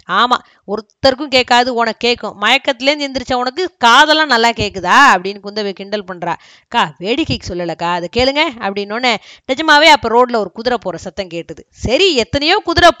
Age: 20-39